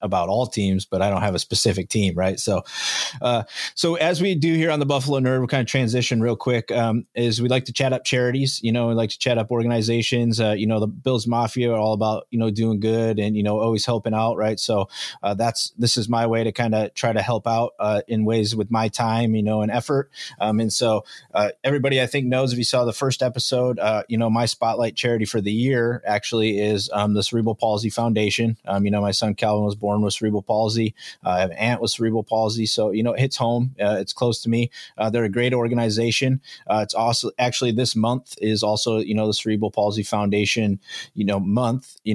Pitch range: 105-120 Hz